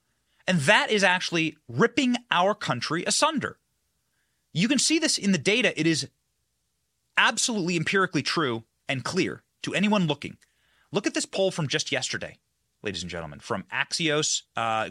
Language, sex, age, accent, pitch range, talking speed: English, male, 30-49, American, 130-215 Hz, 155 wpm